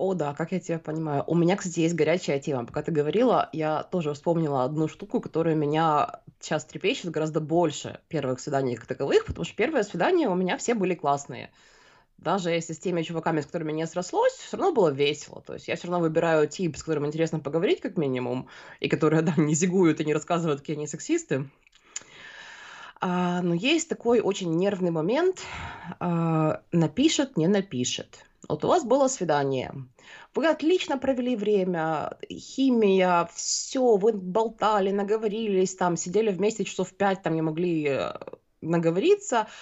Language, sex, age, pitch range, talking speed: Russian, female, 20-39, 155-210 Hz, 160 wpm